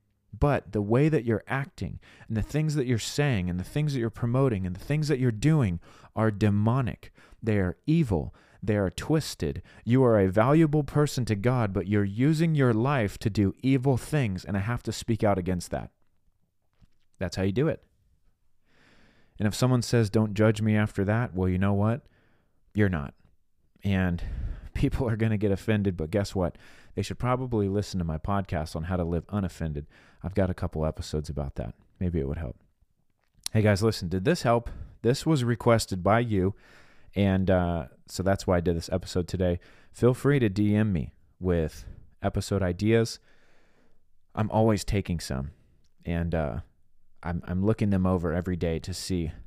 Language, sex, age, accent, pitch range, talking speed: English, male, 30-49, American, 90-115 Hz, 185 wpm